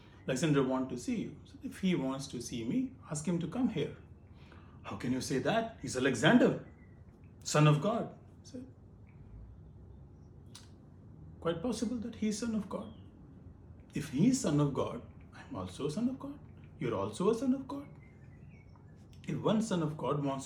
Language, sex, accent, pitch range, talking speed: English, male, Indian, 110-170 Hz, 170 wpm